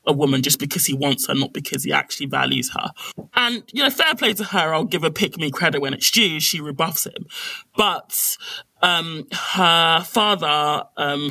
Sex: male